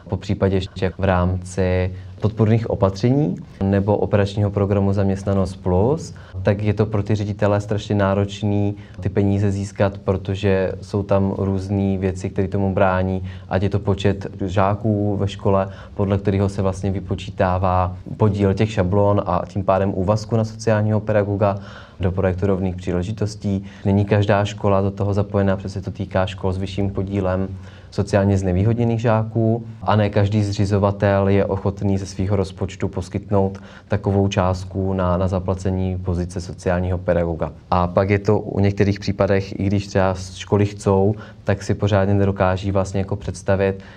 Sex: male